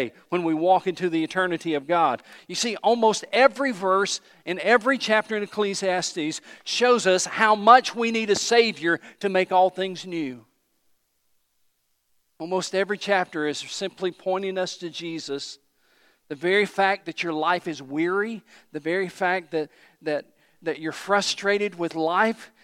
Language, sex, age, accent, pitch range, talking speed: English, male, 50-69, American, 120-190 Hz, 150 wpm